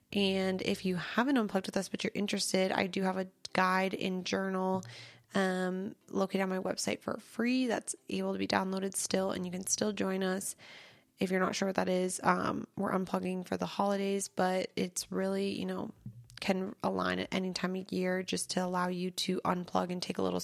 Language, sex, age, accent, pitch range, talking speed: English, female, 20-39, American, 175-195 Hz, 210 wpm